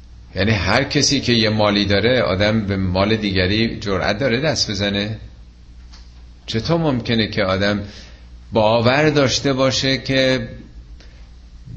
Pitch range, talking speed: 85-120 Hz, 115 wpm